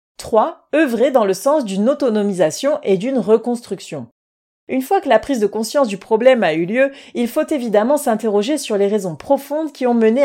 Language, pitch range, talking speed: French, 195-275 Hz, 195 wpm